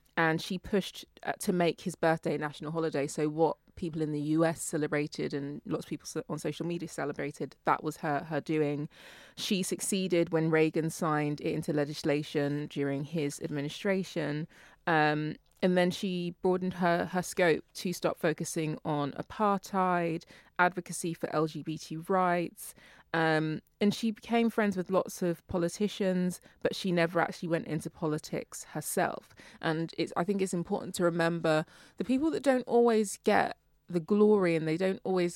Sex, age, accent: female, 20-39, British